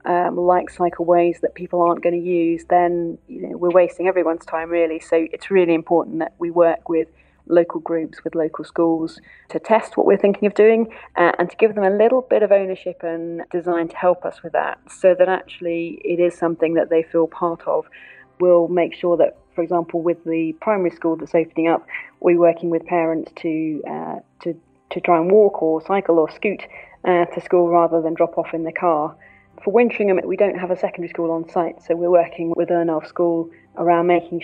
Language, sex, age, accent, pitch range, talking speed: English, female, 30-49, British, 165-175 Hz, 215 wpm